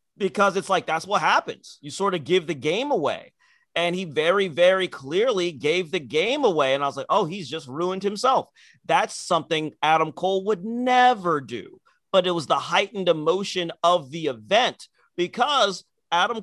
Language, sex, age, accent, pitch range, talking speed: English, male, 30-49, American, 145-195 Hz, 180 wpm